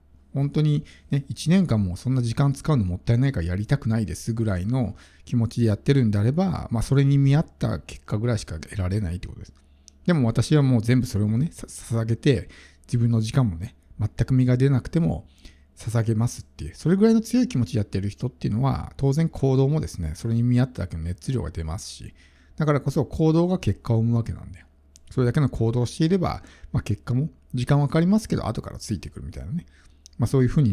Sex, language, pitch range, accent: male, Japanese, 90-140 Hz, native